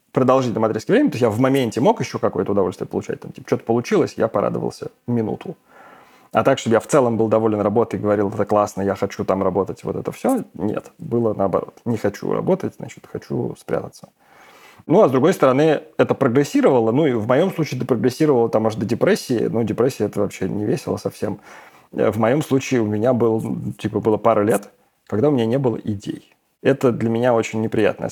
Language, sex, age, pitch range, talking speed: Russian, male, 30-49, 105-130 Hz, 205 wpm